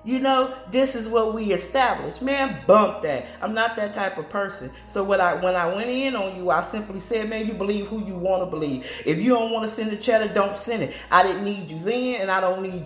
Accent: American